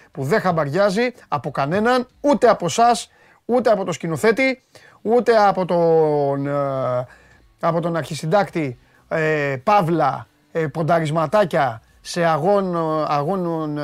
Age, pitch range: 30-49, 135-185 Hz